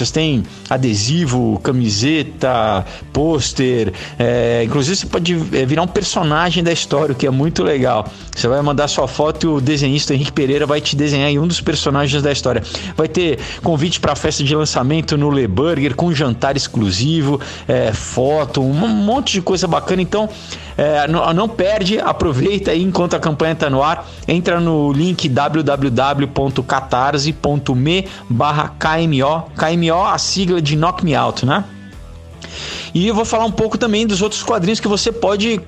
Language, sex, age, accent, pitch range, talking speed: Portuguese, male, 50-69, Brazilian, 130-165 Hz, 155 wpm